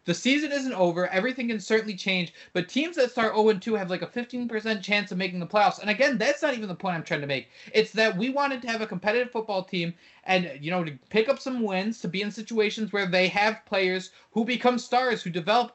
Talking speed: 245 wpm